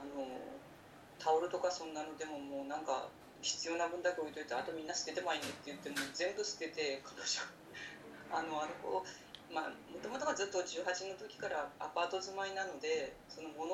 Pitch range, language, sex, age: 150-180 Hz, Japanese, female, 40-59